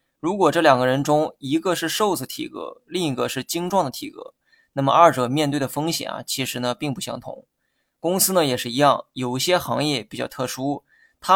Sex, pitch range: male, 130-165 Hz